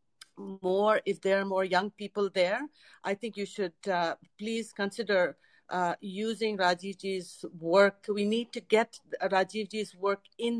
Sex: female